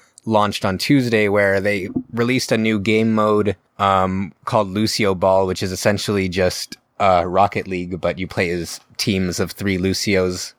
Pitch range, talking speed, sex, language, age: 95-120 Hz, 165 wpm, male, English, 20-39